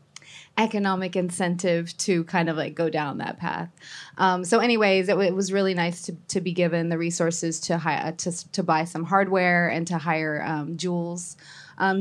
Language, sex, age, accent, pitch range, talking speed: English, female, 20-39, American, 165-190 Hz, 195 wpm